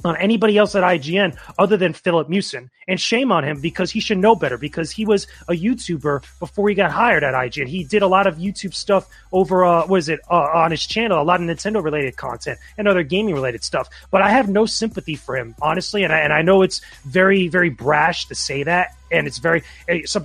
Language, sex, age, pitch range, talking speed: English, male, 30-49, 160-205 Hz, 230 wpm